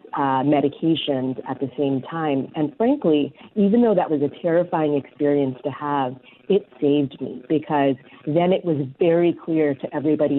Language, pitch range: English, 140-160 Hz